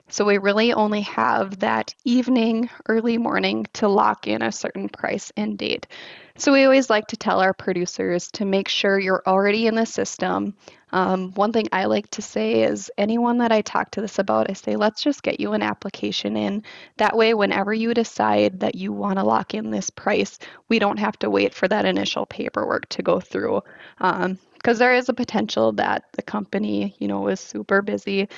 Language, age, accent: English, 20-39, American